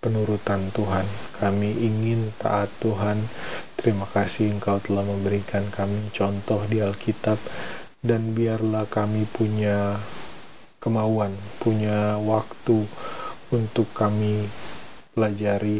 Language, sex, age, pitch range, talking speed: Indonesian, male, 20-39, 100-115 Hz, 95 wpm